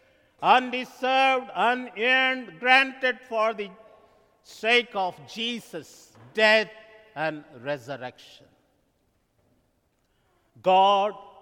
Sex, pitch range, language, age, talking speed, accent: male, 155-230 Hz, English, 50-69, 65 wpm, Indian